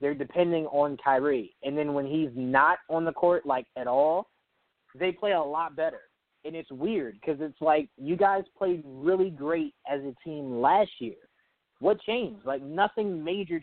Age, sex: 20-39, male